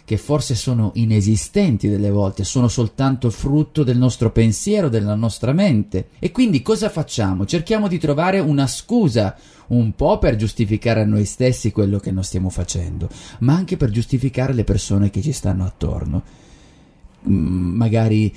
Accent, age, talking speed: native, 30-49, 155 wpm